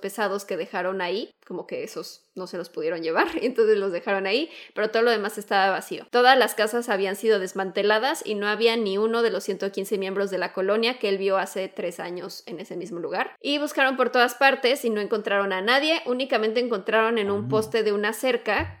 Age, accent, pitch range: 20-39, Mexican, 200-245 Hz